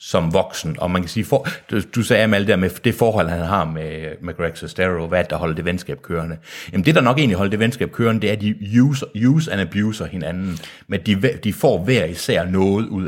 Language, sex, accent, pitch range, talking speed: Danish, male, native, 90-125 Hz, 235 wpm